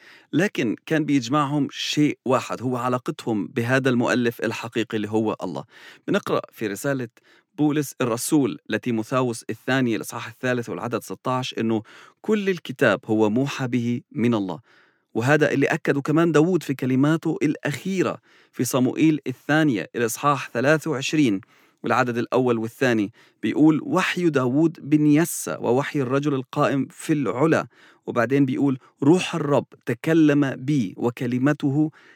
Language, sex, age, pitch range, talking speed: English, male, 40-59, 120-150 Hz, 125 wpm